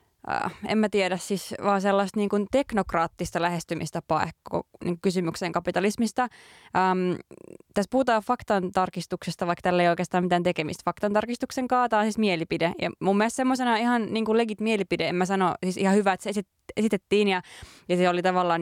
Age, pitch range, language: 20-39, 175-210 Hz, Finnish